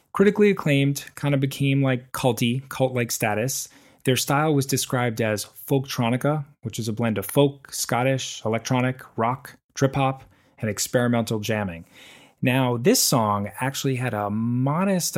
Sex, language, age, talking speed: male, English, 30-49, 140 wpm